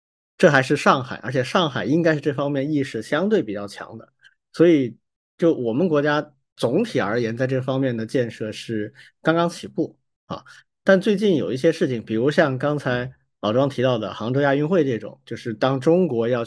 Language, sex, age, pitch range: Chinese, male, 50-69, 115-150 Hz